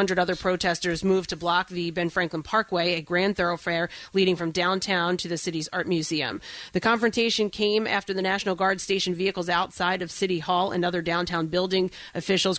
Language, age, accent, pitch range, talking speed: English, 30-49, American, 175-195 Hz, 180 wpm